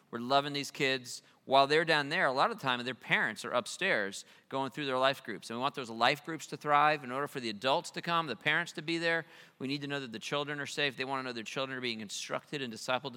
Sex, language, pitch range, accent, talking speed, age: male, English, 125-155 Hz, American, 285 wpm, 40-59